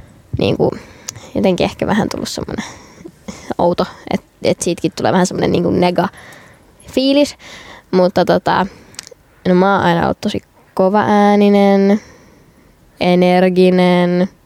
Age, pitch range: 20-39, 180-210 Hz